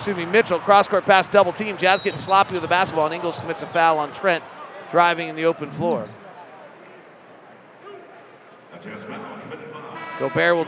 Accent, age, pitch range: American, 40-59, 165-205 Hz